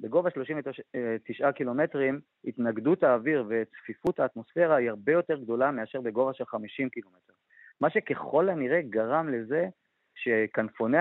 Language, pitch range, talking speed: Hebrew, 115-155 Hz, 120 wpm